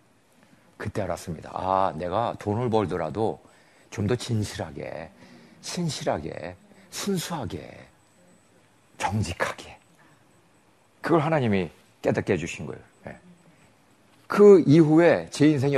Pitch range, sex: 105-160 Hz, male